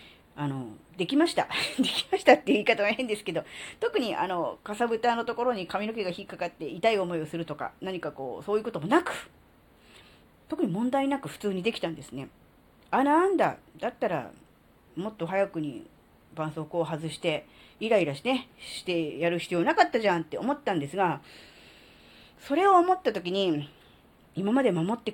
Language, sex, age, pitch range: Japanese, female, 40-59, 155-250 Hz